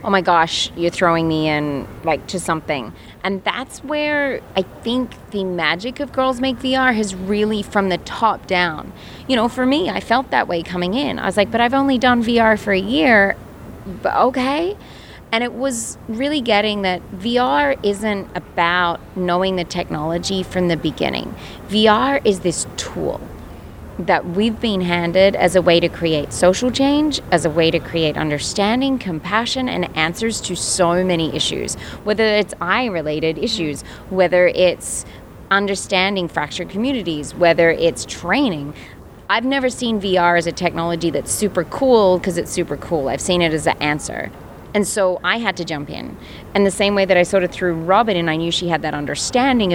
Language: English